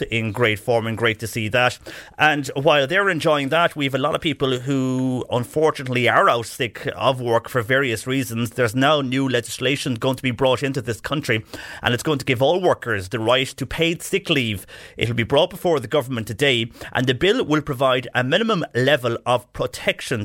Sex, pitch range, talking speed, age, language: male, 110-130 Hz, 205 wpm, 30-49, English